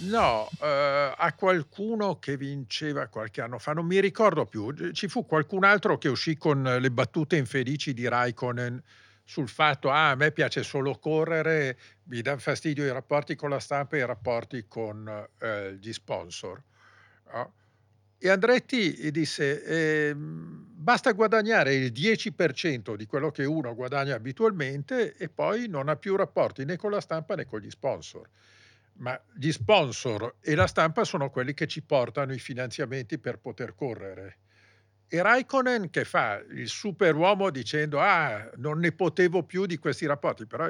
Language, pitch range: Italian, 120-160 Hz